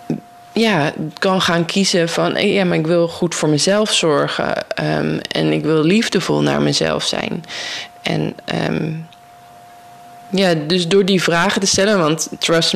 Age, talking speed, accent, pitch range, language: 20-39, 140 wpm, Dutch, 140-185 Hz, Dutch